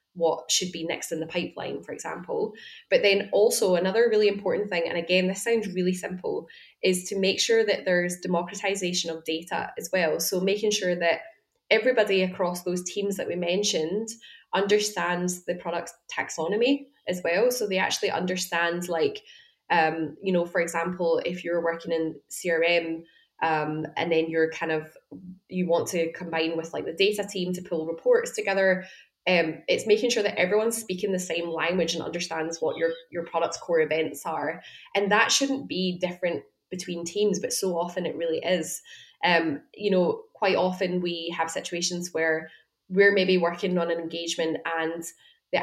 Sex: female